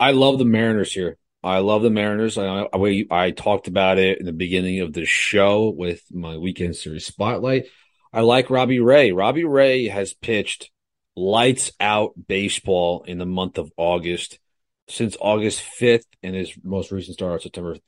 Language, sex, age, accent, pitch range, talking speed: English, male, 30-49, American, 90-110 Hz, 175 wpm